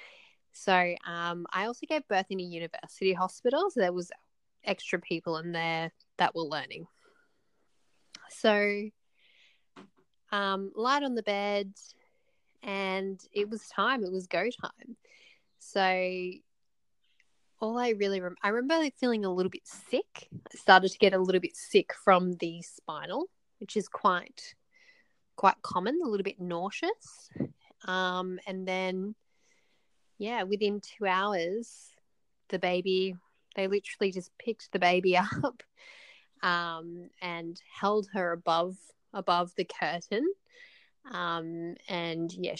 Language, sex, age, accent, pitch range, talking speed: English, female, 10-29, Australian, 180-235 Hz, 130 wpm